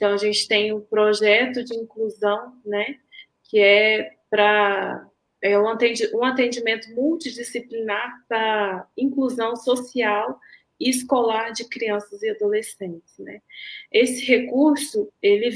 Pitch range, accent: 215-255 Hz, Brazilian